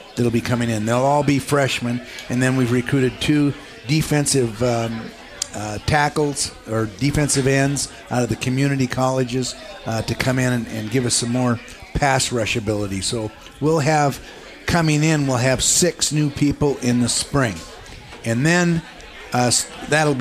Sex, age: male, 50-69